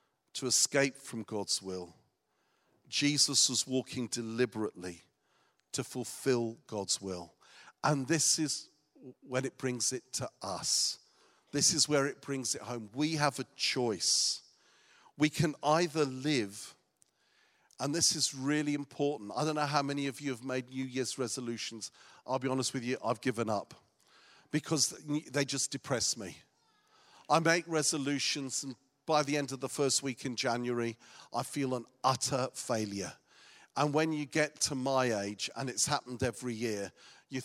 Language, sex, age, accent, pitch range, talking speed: English, male, 50-69, British, 120-145 Hz, 155 wpm